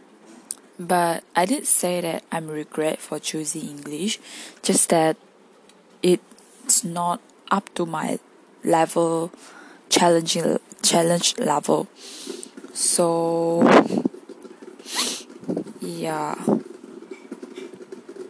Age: 20-39